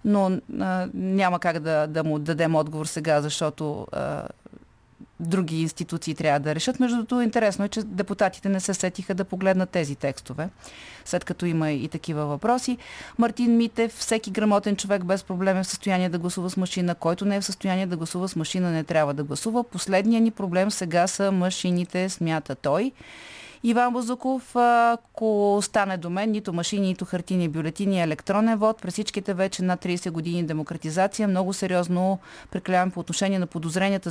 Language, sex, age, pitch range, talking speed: Bulgarian, female, 30-49, 170-210 Hz, 170 wpm